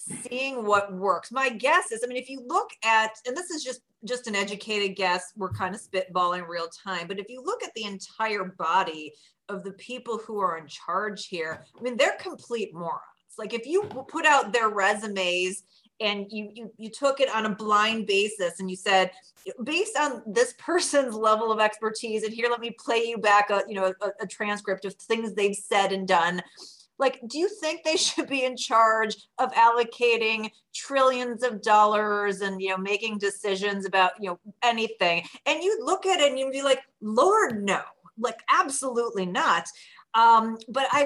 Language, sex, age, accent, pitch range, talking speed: English, female, 30-49, American, 200-255 Hz, 195 wpm